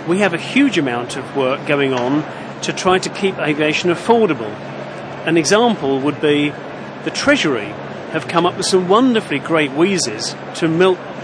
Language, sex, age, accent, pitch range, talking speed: English, male, 40-59, British, 150-185 Hz, 165 wpm